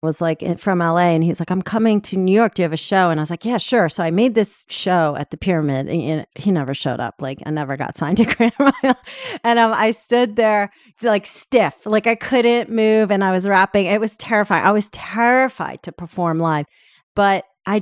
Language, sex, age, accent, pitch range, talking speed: English, female, 40-59, American, 160-210 Hz, 240 wpm